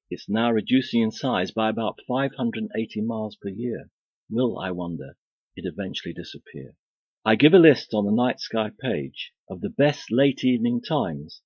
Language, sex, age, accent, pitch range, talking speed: English, male, 50-69, British, 105-140 Hz, 170 wpm